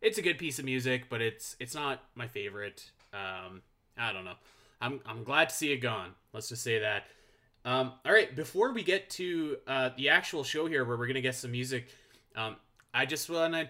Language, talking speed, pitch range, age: English, 220 wpm, 115-140 Hz, 20-39